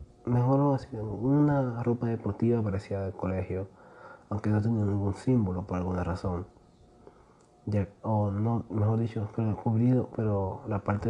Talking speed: 135 wpm